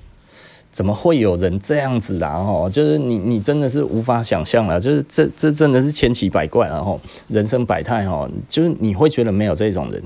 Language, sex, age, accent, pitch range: Chinese, male, 30-49, native, 95-125 Hz